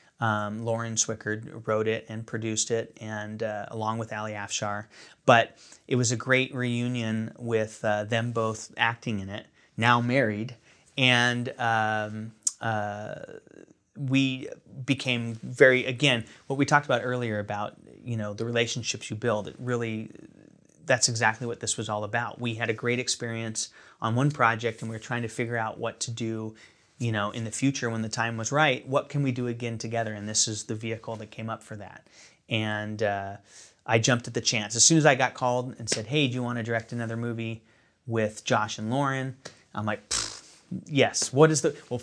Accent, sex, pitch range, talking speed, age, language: American, male, 110-125 Hz, 195 wpm, 30-49, English